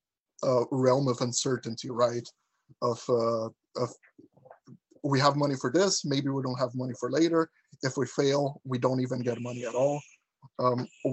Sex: male